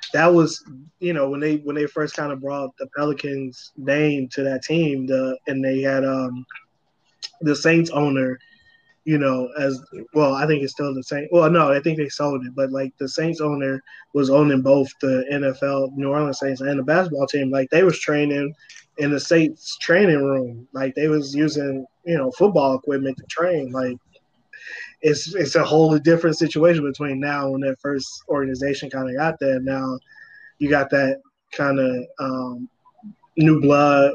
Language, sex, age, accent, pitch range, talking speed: English, male, 20-39, American, 135-155 Hz, 185 wpm